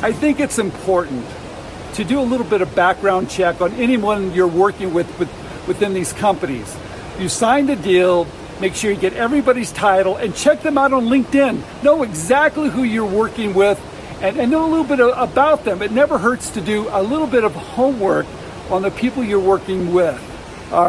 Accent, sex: American, male